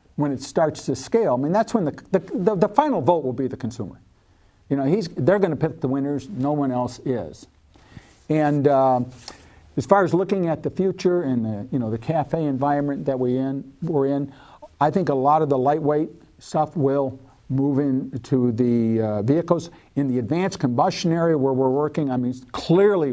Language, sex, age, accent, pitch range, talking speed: English, male, 50-69, American, 130-175 Hz, 195 wpm